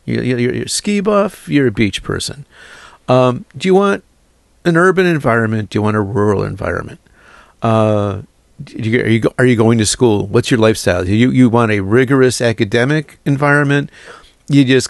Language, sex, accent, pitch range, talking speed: English, male, American, 105-130 Hz, 170 wpm